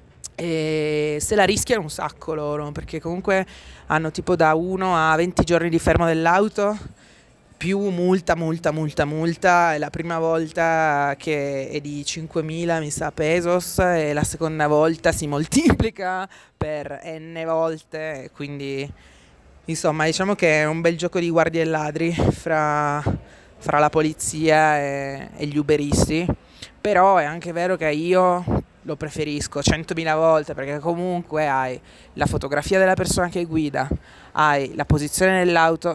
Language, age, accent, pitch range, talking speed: Italian, 20-39, native, 145-170 Hz, 145 wpm